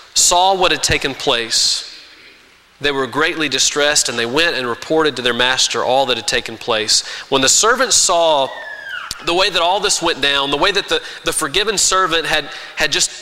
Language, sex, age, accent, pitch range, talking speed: English, male, 30-49, American, 140-180 Hz, 195 wpm